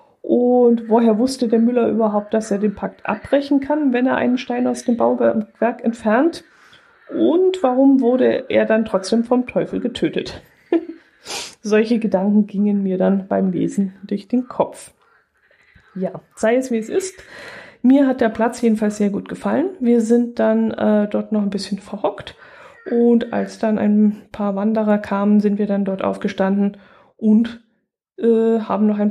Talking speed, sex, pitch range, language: 160 wpm, female, 200-235 Hz, German